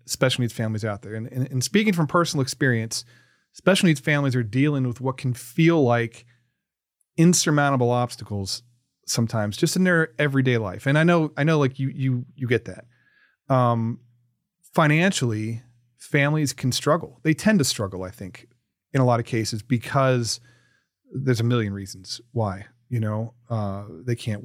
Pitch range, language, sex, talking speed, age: 120-145 Hz, English, male, 165 wpm, 30-49